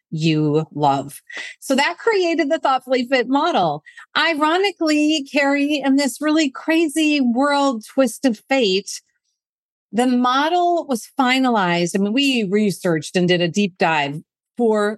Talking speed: 130 wpm